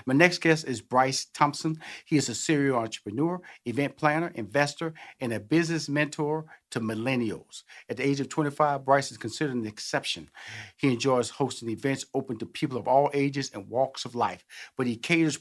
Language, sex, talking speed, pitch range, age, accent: English, male, 185 wpm, 115-140 Hz, 50-69, American